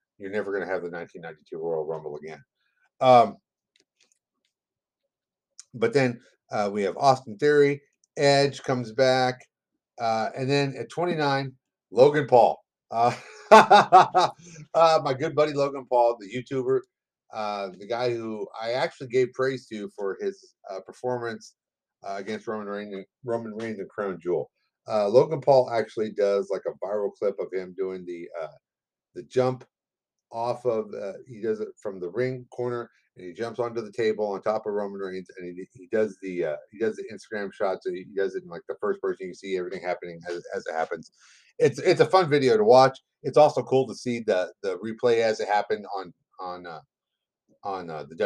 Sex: male